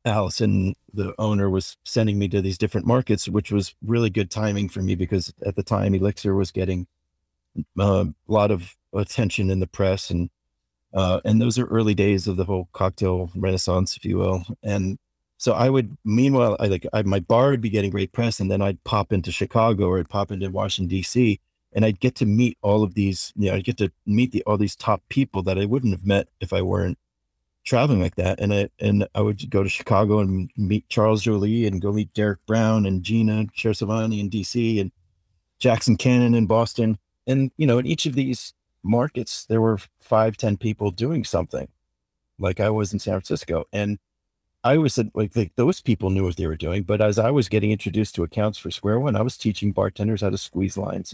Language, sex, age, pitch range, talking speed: English, male, 40-59, 95-110 Hz, 215 wpm